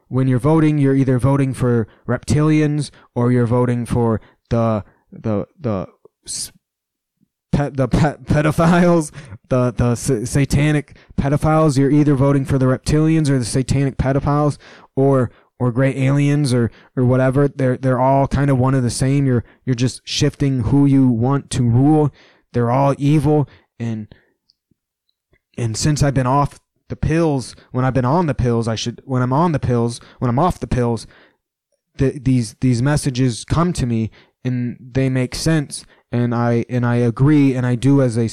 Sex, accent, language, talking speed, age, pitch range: male, American, English, 165 wpm, 20-39, 120-145 Hz